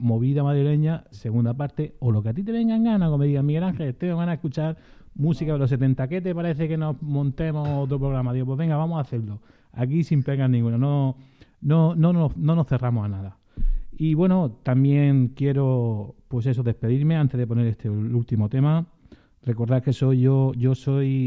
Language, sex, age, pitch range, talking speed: Spanish, male, 30-49, 120-150 Hz, 200 wpm